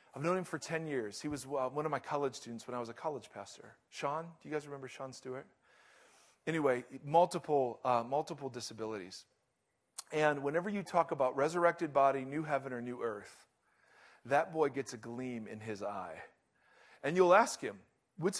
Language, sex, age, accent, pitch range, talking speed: English, male, 40-59, American, 135-185 Hz, 185 wpm